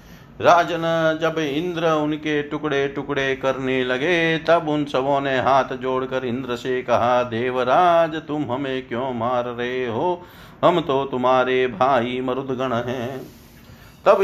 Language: Hindi